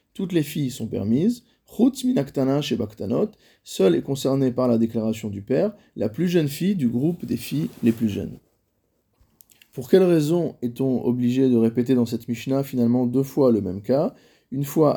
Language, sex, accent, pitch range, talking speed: French, male, French, 115-145 Hz, 175 wpm